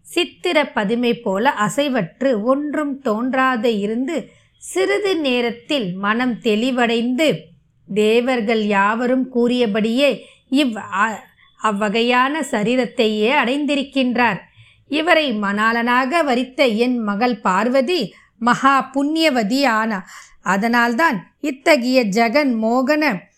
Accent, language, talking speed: native, Tamil, 80 wpm